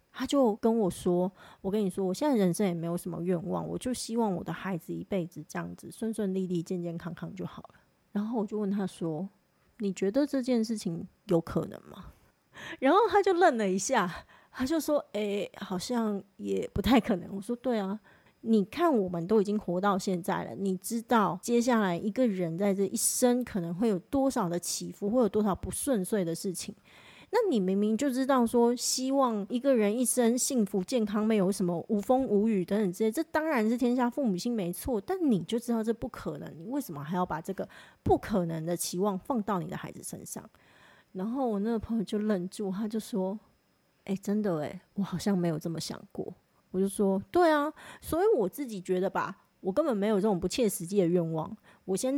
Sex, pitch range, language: female, 185-235 Hz, Chinese